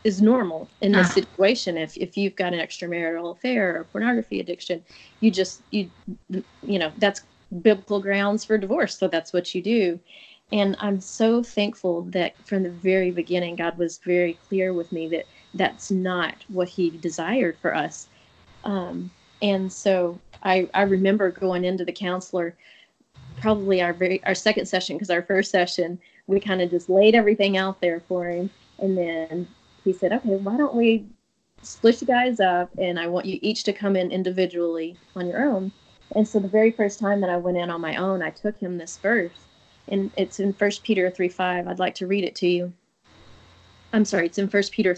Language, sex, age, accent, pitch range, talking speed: English, female, 30-49, American, 180-205 Hz, 195 wpm